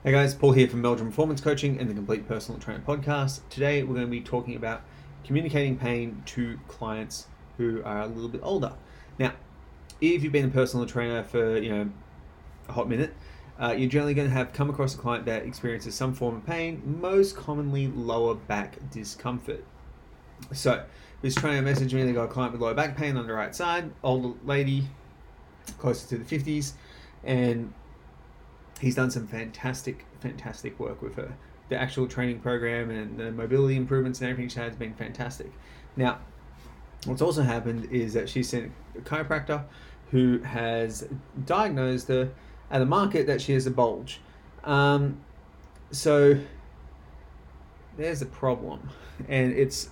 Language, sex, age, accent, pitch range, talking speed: English, male, 30-49, Australian, 110-135 Hz, 170 wpm